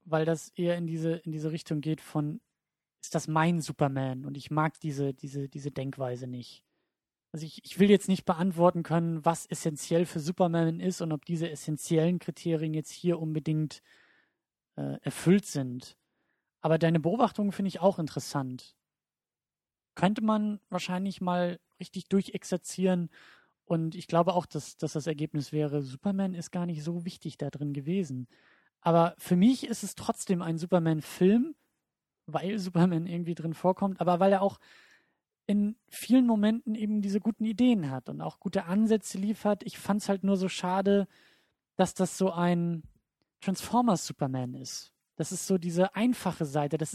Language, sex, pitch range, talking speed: German, male, 155-195 Hz, 160 wpm